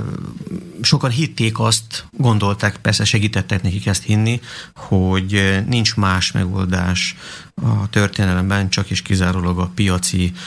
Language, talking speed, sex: Slovak, 115 wpm, male